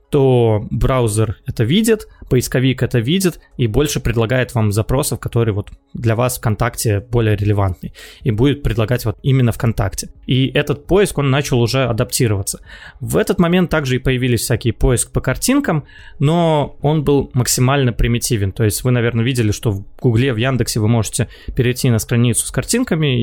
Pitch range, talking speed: 115-145 Hz, 165 wpm